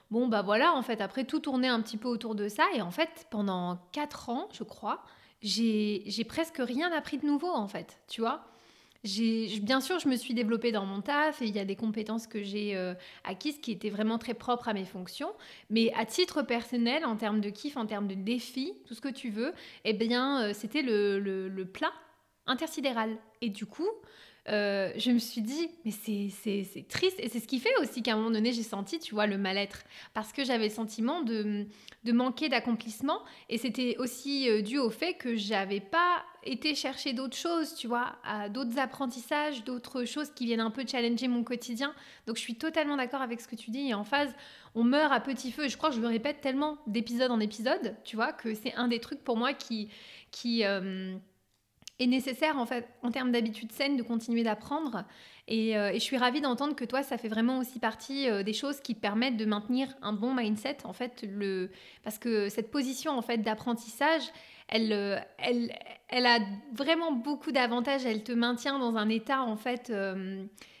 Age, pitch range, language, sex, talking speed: 20-39, 220-270 Hz, French, female, 215 wpm